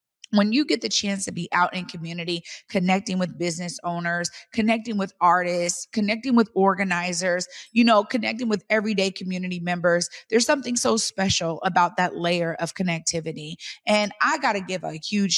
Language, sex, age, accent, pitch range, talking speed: English, female, 30-49, American, 180-225 Hz, 170 wpm